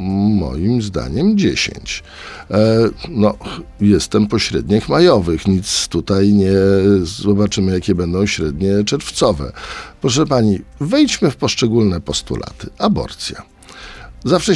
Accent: native